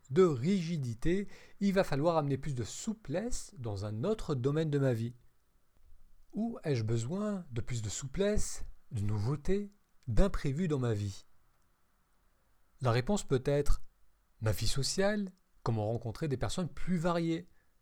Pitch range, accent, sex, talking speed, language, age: 110-175 Hz, French, male, 140 wpm, French, 40-59